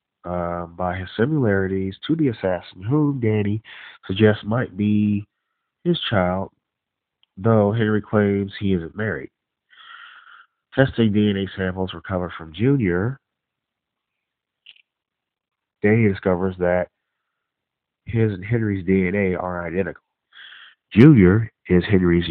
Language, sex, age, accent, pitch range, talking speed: English, male, 30-49, American, 90-110 Hz, 100 wpm